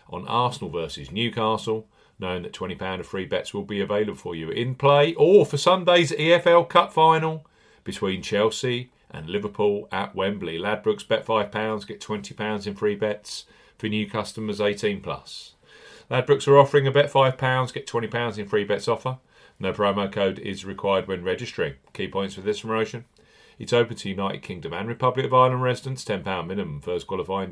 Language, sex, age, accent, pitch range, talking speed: English, male, 40-59, British, 100-140 Hz, 185 wpm